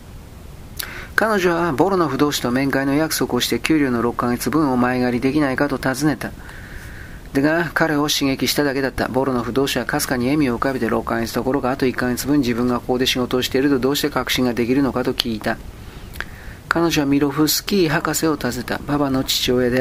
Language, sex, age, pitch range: Japanese, male, 40-59, 125-140 Hz